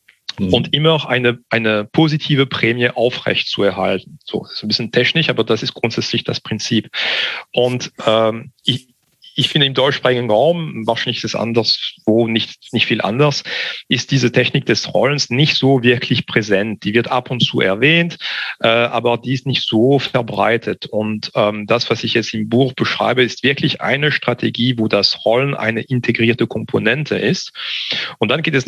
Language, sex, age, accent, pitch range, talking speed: German, male, 40-59, German, 115-135 Hz, 170 wpm